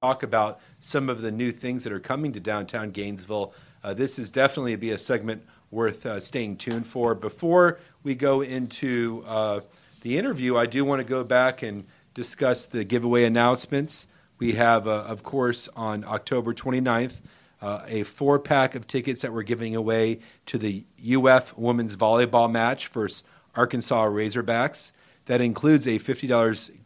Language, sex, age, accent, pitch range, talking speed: English, male, 40-59, American, 105-125 Hz, 165 wpm